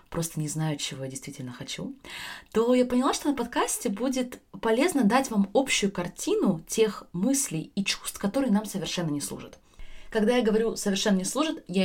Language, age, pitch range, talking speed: Russian, 20-39, 160-205 Hz, 175 wpm